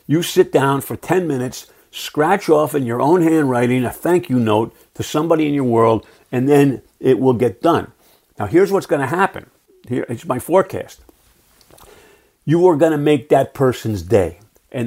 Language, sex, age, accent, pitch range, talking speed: English, male, 50-69, American, 115-155 Hz, 185 wpm